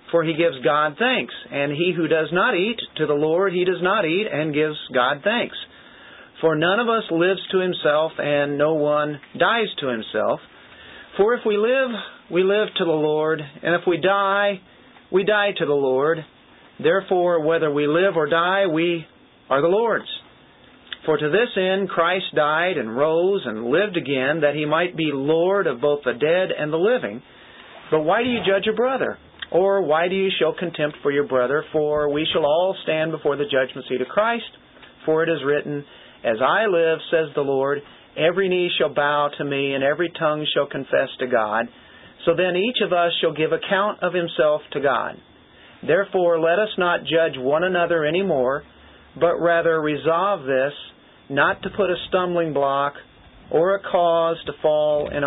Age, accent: 50-69, American